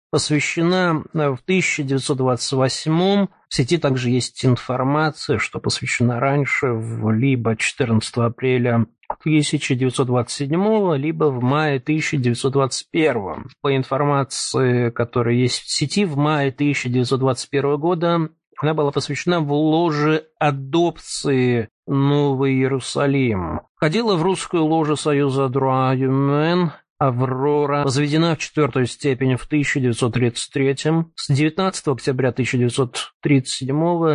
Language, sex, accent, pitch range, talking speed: Russian, male, native, 125-155 Hz, 100 wpm